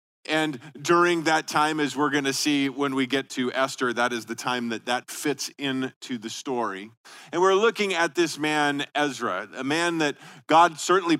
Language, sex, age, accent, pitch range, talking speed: English, male, 40-59, American, 135-165 Hz, 195 wpm